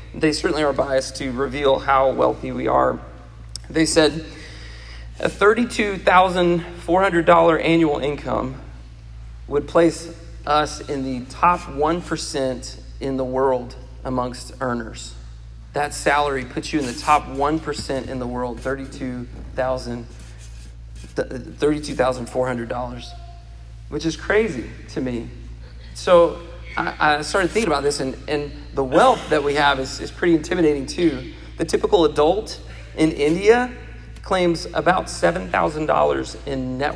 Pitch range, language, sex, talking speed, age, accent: 120-155 Hz, English, male, 120 wpm, 40-59, American